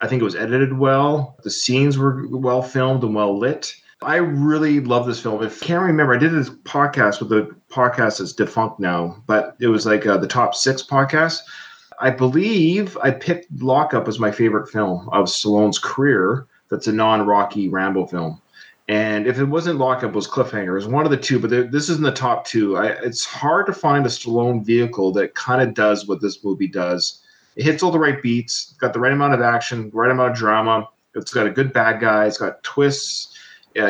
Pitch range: 105-140 Hz